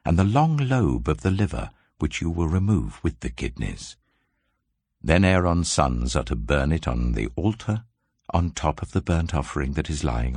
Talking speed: 190 wpm